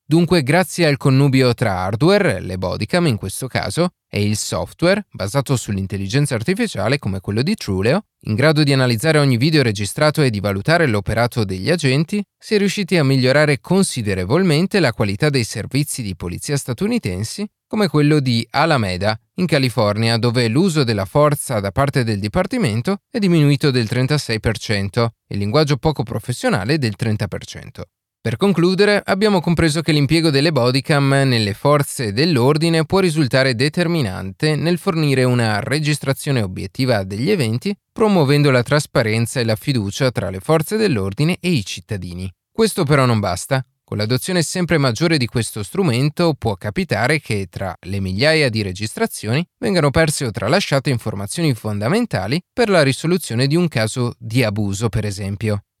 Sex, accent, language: male, native, Italian